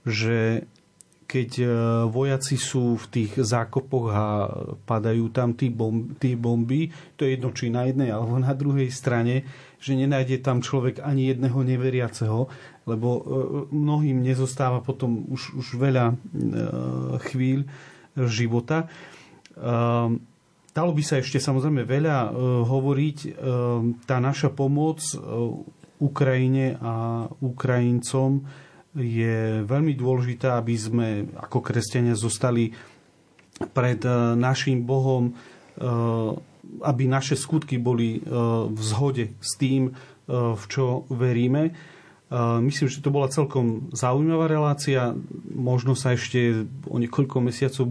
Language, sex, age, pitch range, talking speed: Slovak, male, 40-59, 120-135 Hz, 110 wpm